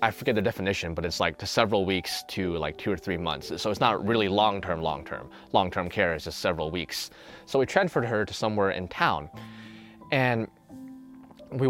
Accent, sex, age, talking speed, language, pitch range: American, male, 20-39, 195 wpm, English, 95-130 Hz